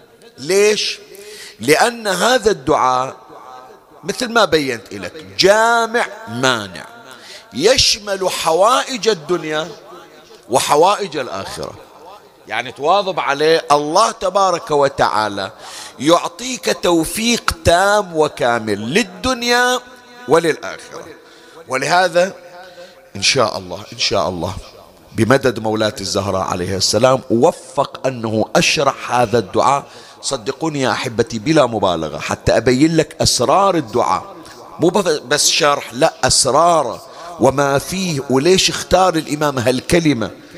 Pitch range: 130-195 Hz